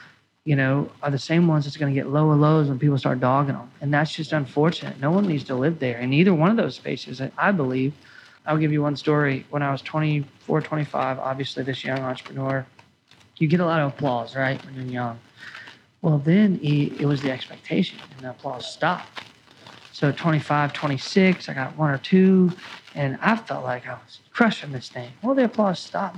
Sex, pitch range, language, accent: male, 135-170 Hz, English, American